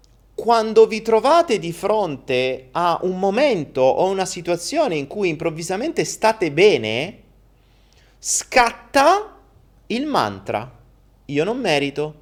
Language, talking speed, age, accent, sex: Italian, 110 wpm, 30-49, native, male